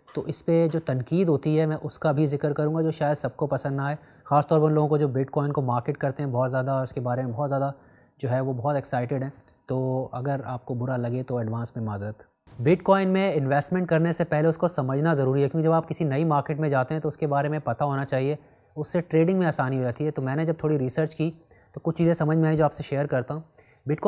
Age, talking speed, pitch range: 20-39, 120 wpm, 130-155 Hz